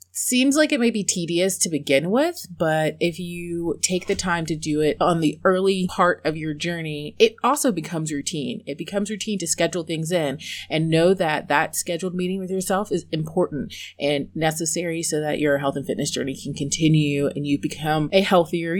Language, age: English, 30-49